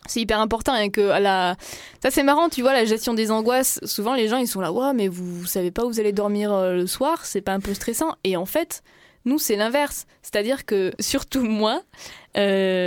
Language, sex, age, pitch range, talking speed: French, female, 20-39, 185-250 Hz, 240 wpm